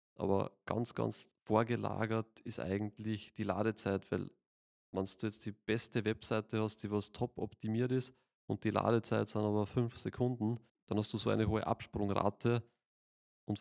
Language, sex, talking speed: German, male, 160 wpm